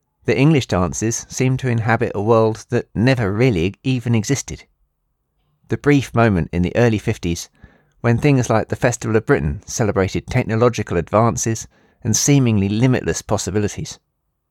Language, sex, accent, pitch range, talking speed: English, male, British, 95-125 Hz, 140 wpm